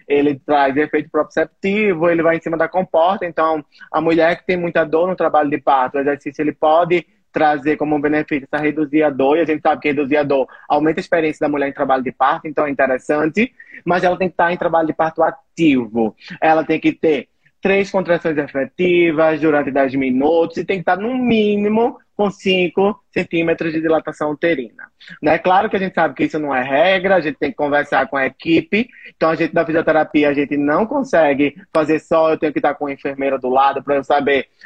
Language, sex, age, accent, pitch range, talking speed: Portuguese, male, 20-39, Brazilian, 150-175 Hz, 220 wpm